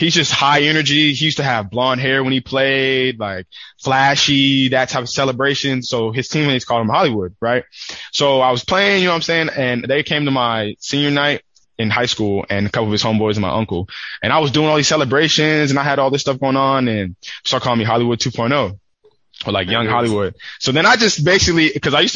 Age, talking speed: 20-39, 235 wpm